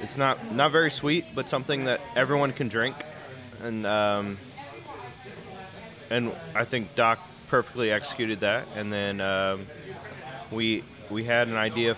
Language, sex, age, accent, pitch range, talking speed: English, male, 20-39, American, 105-130 Hz, 140 wpm